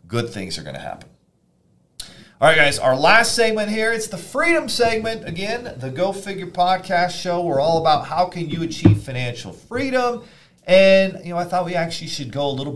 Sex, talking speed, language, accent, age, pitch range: male, 200 wpm, English, American, 40-59, 120-170 Hz